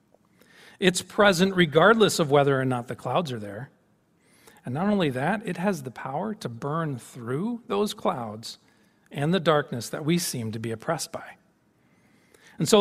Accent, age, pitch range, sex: American, 40-59, 145-210 Hz, male